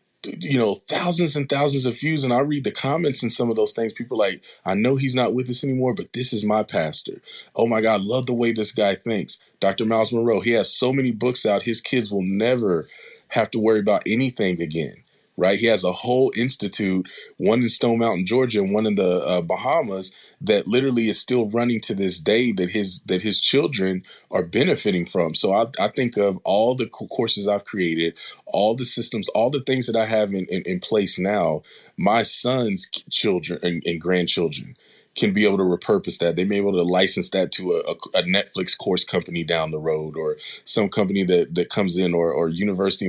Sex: male